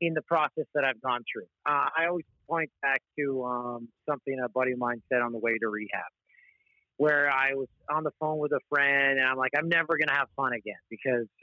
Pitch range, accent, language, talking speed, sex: 125-170 Hz, American, English, 230 wpm, male